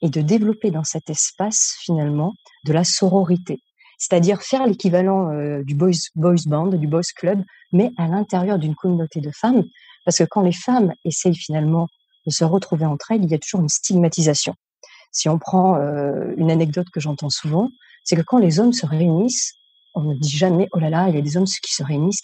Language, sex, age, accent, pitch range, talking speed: French, female, 40-59, French, 160-215 Hz, 210 wpm